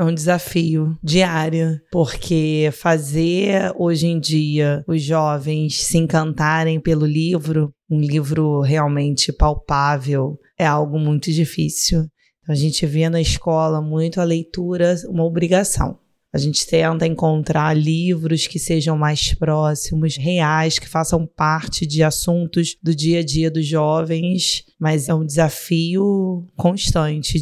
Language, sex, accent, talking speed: Portuguese, female, Brazilian, 130 wpm